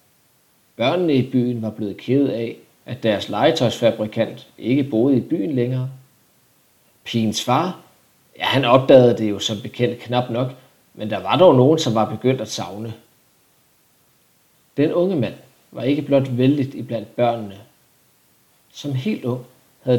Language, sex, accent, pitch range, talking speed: Danish, male, native, 110-140 Hz, 145 wpm